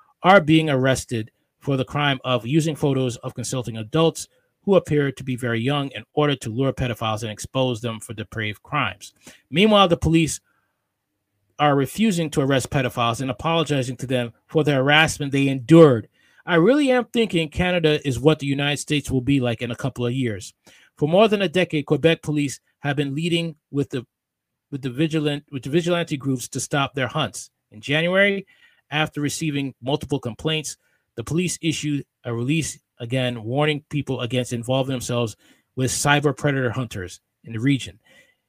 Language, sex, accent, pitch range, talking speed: English, male, American, 125-155 Hz, 175 wpm